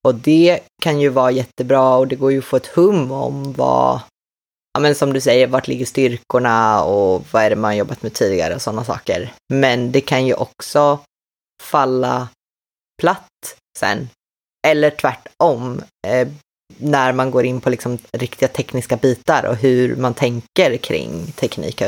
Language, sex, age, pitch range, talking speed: Swedish, female, 20-39, 125-145 Hz, 165 wpm